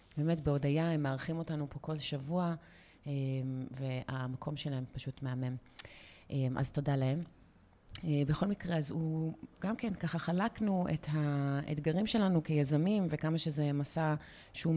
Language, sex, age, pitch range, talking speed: Hebrew, female, 30-49, 145-175 Hz, 125 wpm